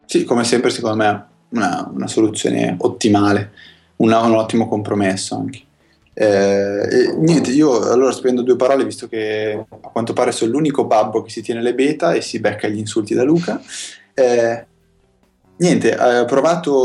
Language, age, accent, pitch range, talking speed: Italian, 20-39, native, 100-120 Hz, 165 wpm